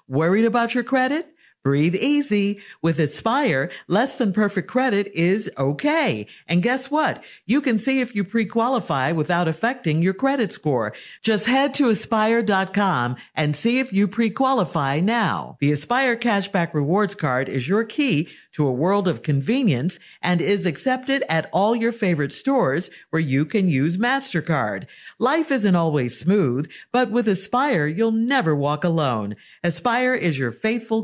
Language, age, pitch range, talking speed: English, 50-69, 160-240 Hz, 155 wpm